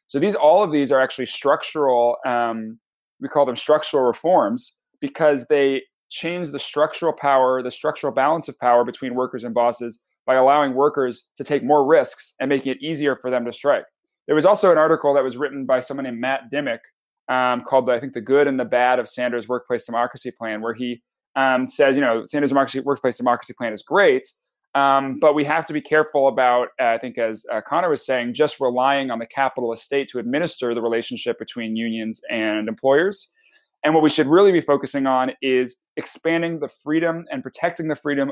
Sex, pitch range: male, 125-150 Hz